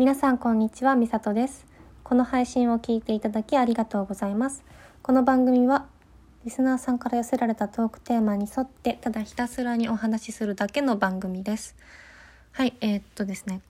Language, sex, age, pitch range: Japanese, female, 20-39, 200-255 Hz